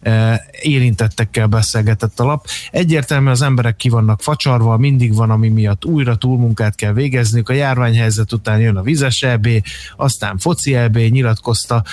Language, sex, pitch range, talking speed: Hungarian, male, 110-125 Hz, 140 wpm